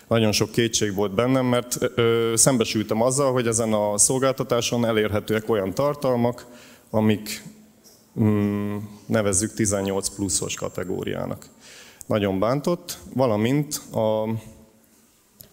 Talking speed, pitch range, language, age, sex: 95 wpm, 105-120 Hz, Hungarian, 30-49, male